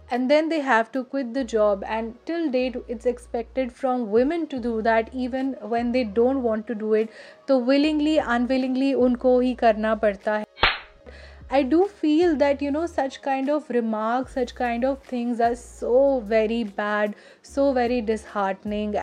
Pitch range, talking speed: 235-275 Hz, 175 wpm